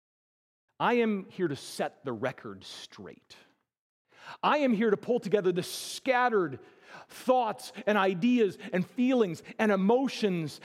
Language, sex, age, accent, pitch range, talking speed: English, male, 40-59, American, 125-195 Hz, 130 wpm